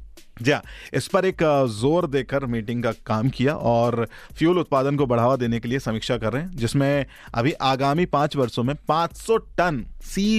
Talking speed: 175 wpm